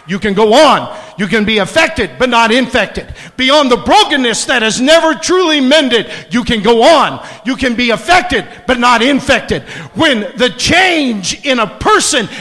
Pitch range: 130-220 Hz